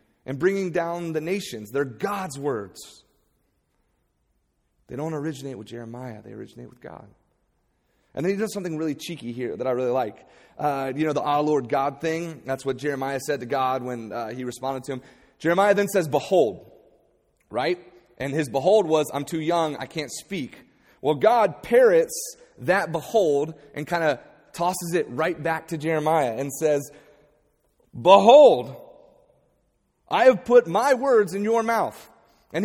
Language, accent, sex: English, American, male